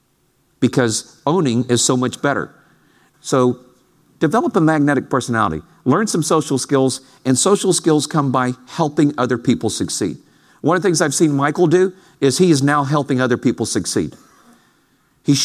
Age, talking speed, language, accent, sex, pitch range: 50-69, 160 wpm, English, American, male, 130-205 Hz